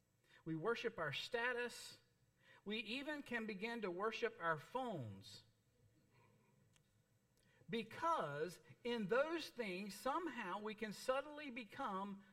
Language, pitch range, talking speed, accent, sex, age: English, 140-220 Hz, 100 wpm, American, male, 50-69